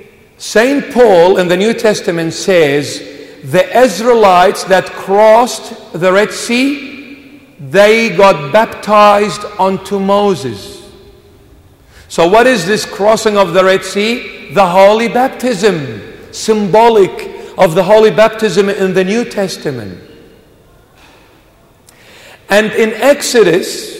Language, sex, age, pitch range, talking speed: English, male, 50-69, 170-225 Hz, 110 wpm